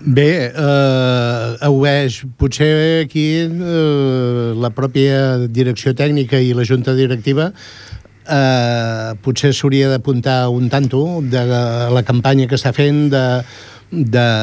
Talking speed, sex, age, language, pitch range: 120 wpm, male, 60-79, Italian, 130-150 Hz